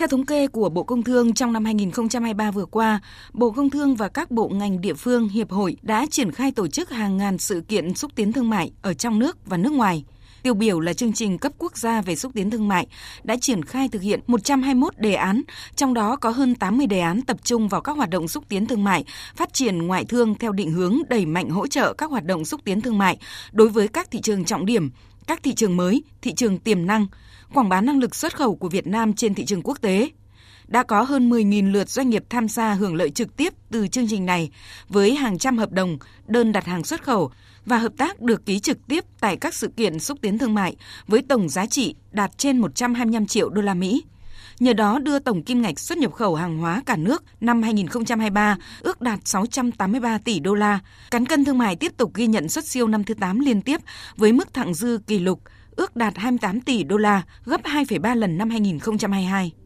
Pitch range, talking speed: 200-250 Hz, 235 wpm